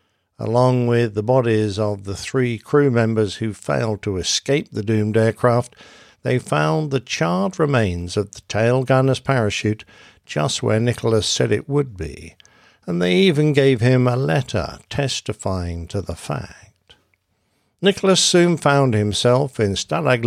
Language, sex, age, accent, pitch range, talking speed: English, male, 60-79, British, 100-135 Hz, 150 wpm